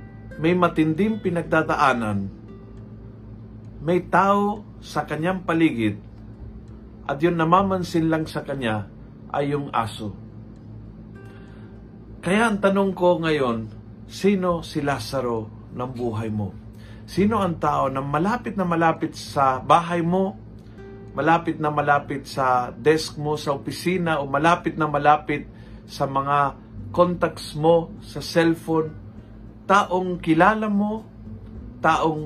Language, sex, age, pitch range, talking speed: Filipino, male, 50-69, 110-160 Hz, 110 wpm